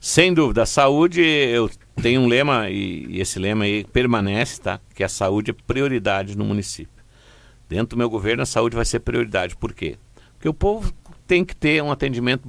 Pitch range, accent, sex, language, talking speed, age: 95-120 Hz, Brazilian, male, Portuguese, 195 wpm, 60-79